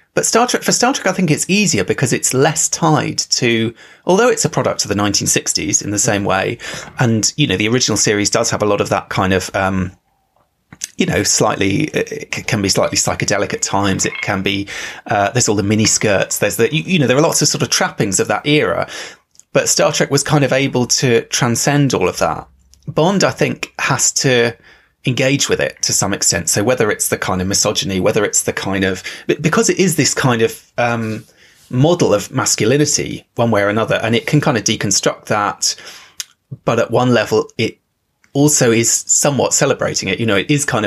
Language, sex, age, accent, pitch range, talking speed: English, male, 30-49, British, 105-140 Hz, 215 wpm